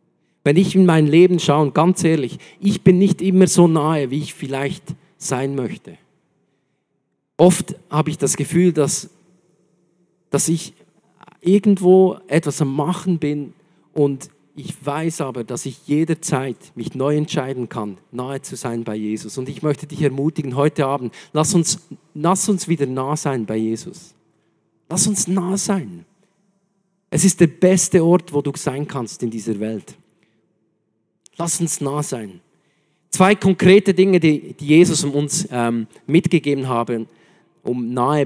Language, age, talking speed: German, 50-69, 150 wpm